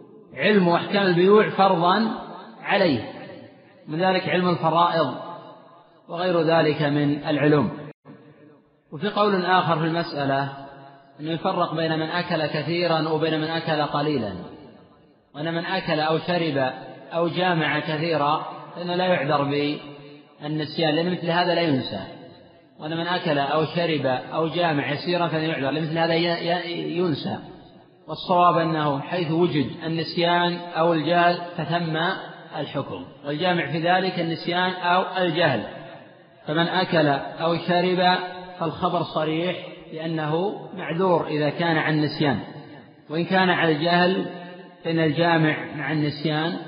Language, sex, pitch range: Arabic, male, 150-175 Hz